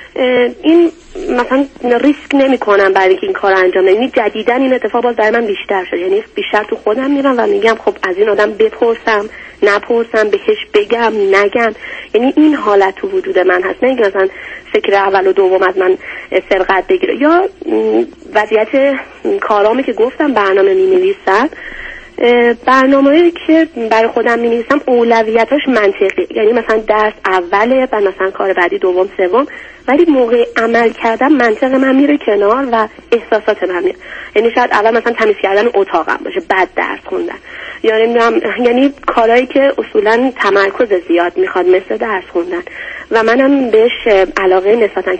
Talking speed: 150 wpm